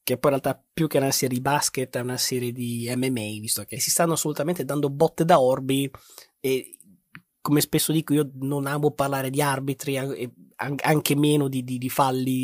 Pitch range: 130-155 Hz